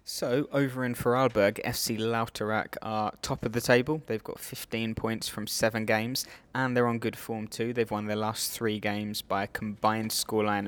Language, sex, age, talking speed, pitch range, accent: English, male, 20-39, 190 wpm, 105-115 Hz, British